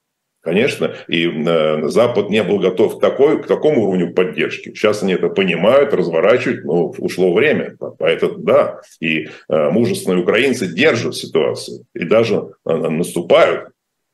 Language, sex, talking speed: Russian, male, 125 wpm